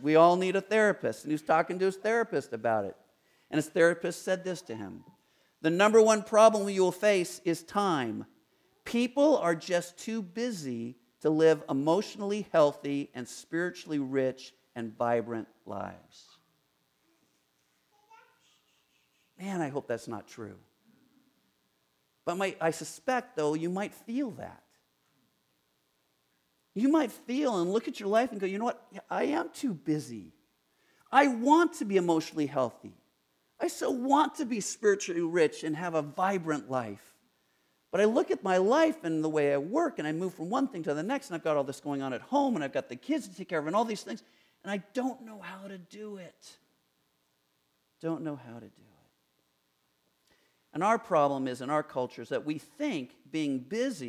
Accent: American